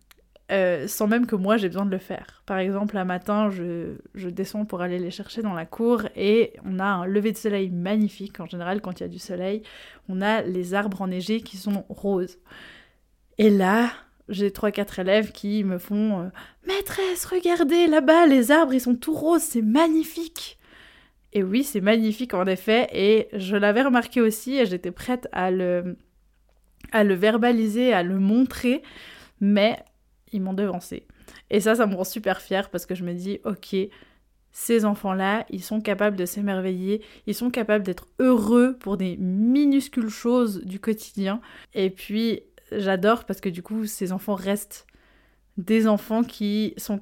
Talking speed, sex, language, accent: 180 wpm, female, French, French